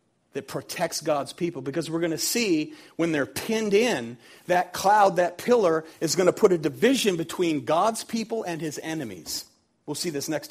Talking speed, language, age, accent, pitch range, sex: 190 wpm, English, 40-59, American, 145-195 Hz, male